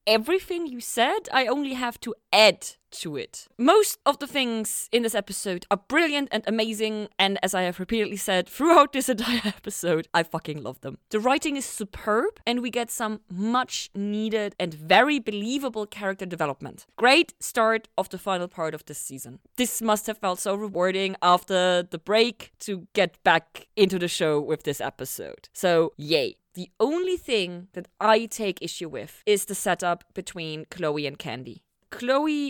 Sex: female